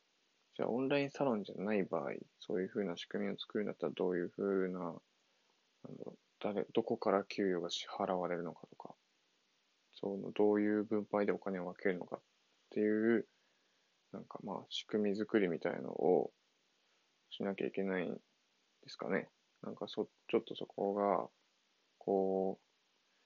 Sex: male